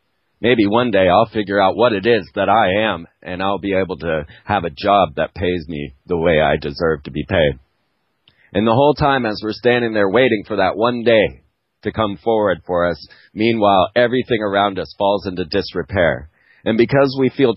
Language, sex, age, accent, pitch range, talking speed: English, male, 40-59, American, 95-120 Hz, 200 wpm